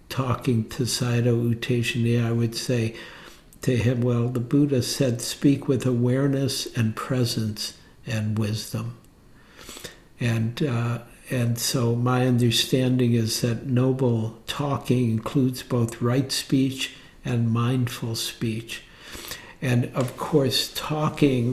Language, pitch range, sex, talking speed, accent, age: English, 120-140 Hz, male, 115 wpm, American, 60-79